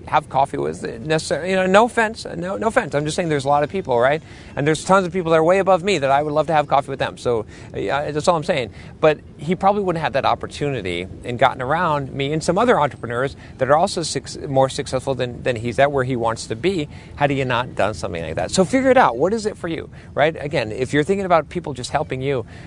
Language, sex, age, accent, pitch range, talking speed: English, male, 40-59, American, 115-160 Hz, 265 wpm